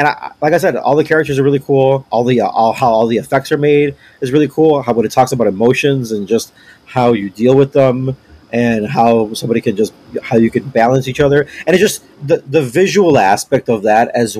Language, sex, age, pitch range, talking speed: English, male, 30-49, 105-140 Hz, 240 wpm